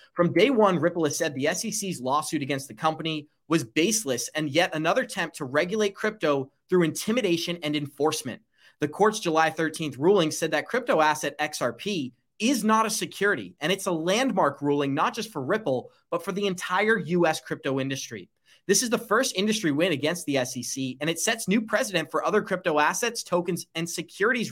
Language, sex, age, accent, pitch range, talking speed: English, male, 30-49, American, 150-190 Hz, 185 wpm